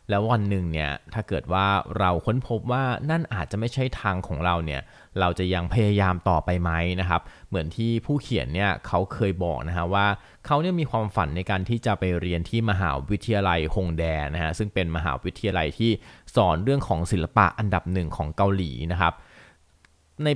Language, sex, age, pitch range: Thai, male, 20-39, 90-110 Hz